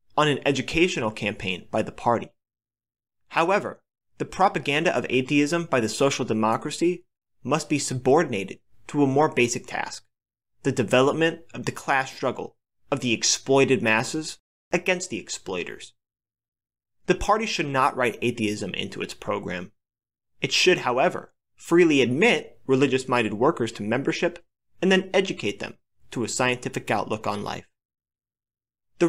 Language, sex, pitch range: English, male, 115-175 Hz